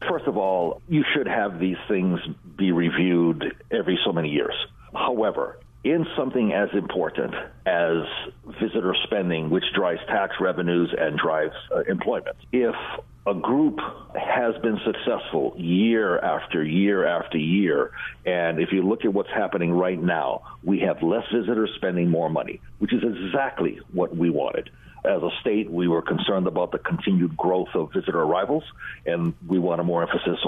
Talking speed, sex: 160 wpm, male